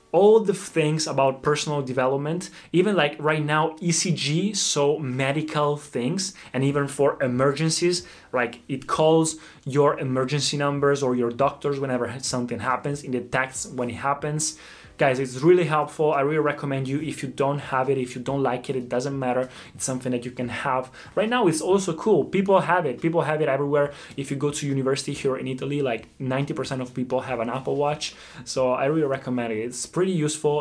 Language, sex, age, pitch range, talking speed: Italian, male, 20-39, 125-155 Hz, 190 wpm